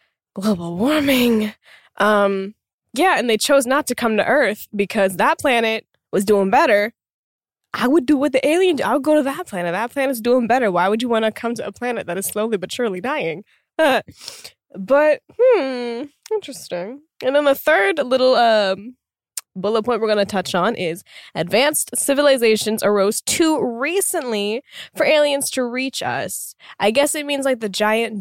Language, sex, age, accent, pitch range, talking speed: English, female, 10-29, American, 190-285 Hz, 175 wpm